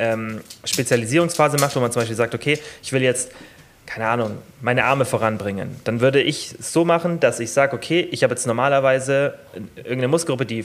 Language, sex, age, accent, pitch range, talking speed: German, male, 30-49, German, 115-135 Hz, 185 wpm